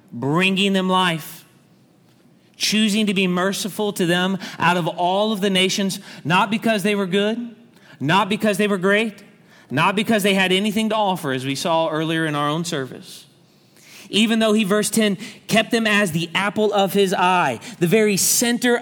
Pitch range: 145-205 Hz